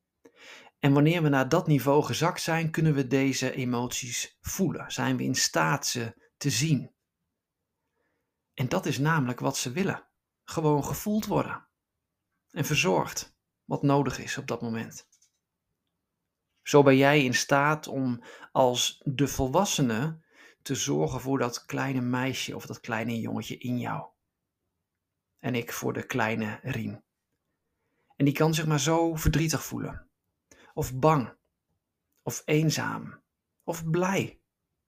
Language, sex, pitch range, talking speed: Dutch, male, 120-155 Hz, 135 wpm